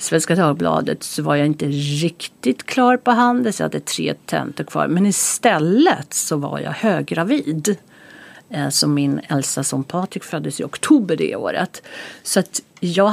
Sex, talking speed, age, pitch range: female, 165 wpm, 50-69, 150-225 Hz